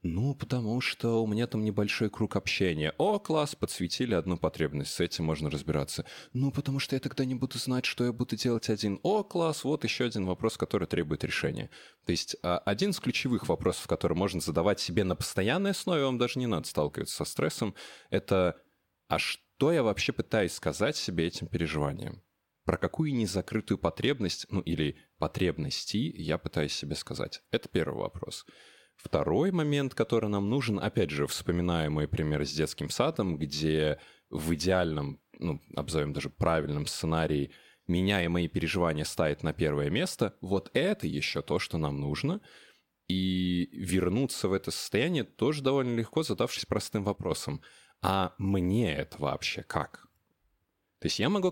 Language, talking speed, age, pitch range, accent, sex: Russian, 165 wpm, 20-39, 80-125 Hz, native, male